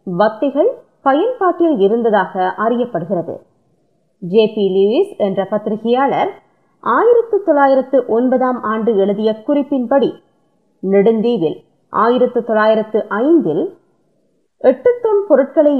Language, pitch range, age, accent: Tamil, 220-360 Hz, 20-39, native